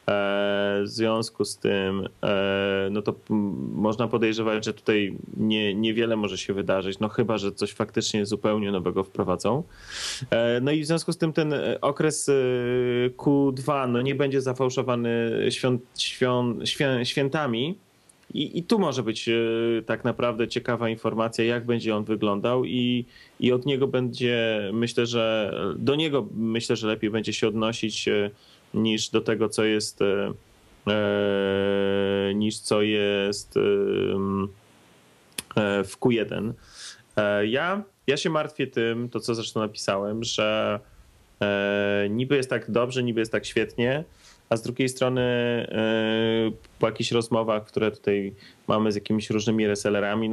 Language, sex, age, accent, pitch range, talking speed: Polish, male, 30-49, native, 105-120 Hz, 135 wpm